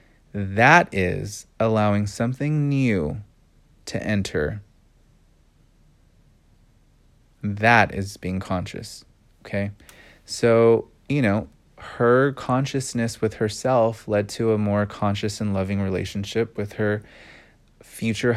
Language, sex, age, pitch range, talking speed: English, male, 20-39, 100-120 Hz, 100 wpm